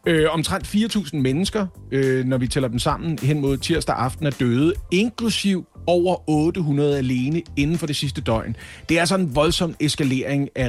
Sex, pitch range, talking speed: male, 130-175 Hz, 170 wpm